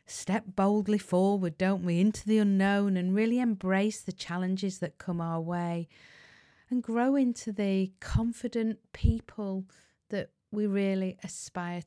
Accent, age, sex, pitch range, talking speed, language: British, 30-49, female, 165-205 Hz, 135 wpm, English